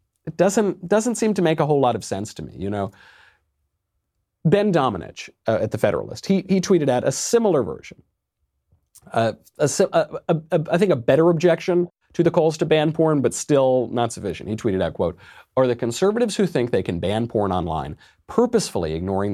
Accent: American